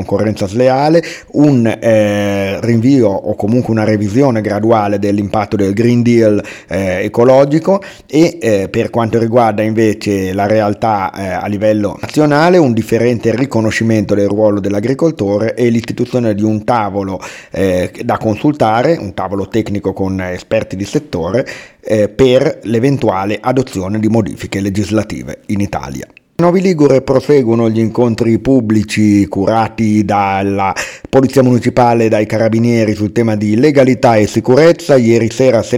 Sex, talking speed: male, 135 wpm